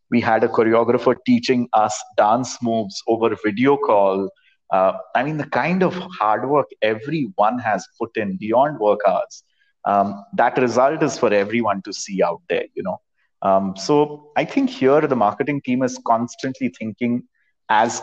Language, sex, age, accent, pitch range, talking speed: English, male, 30-49, Indian, 115-165 Hz, 170 wpm